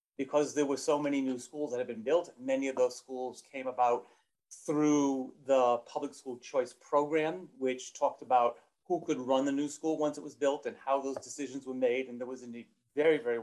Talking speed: 215 wpm